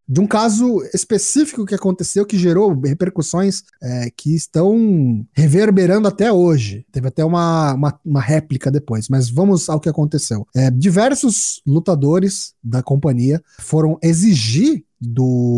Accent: Brazilian